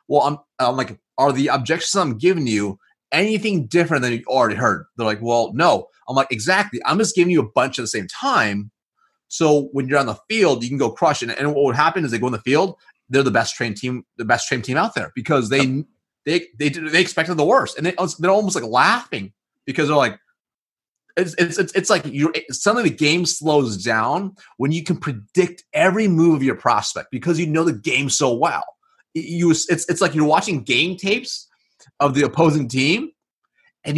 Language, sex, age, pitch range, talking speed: English, male, 30-49, 135-180 Hz, 220 wpm